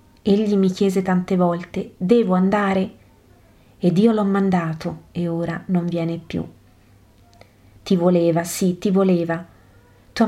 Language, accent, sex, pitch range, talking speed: Italian, native, female, 120-195 Hz, 130 wpm